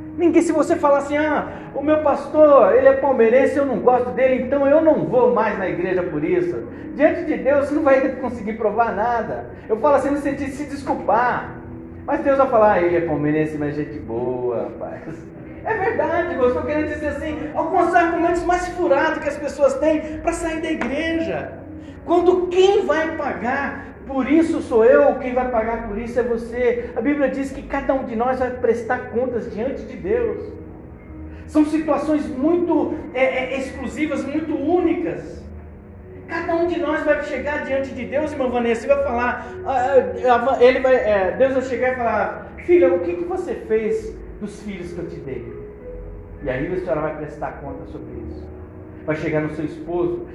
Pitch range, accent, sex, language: 220-310 Hz, Brazilian, male, Portuguese